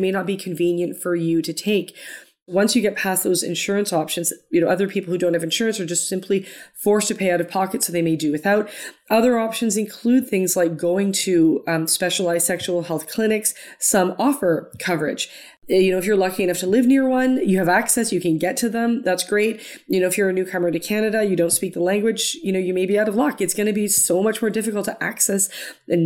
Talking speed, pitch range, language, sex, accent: 235 wpm, 175-210 Hz, English, female, American